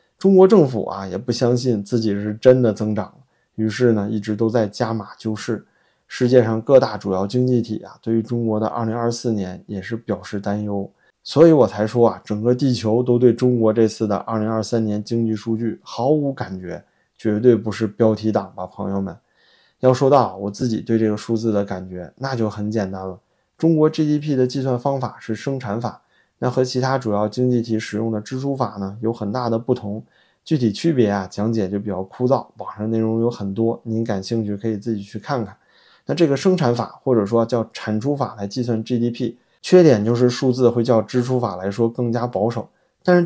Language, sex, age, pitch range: Chinese, male, 20-39, 105-125 Hz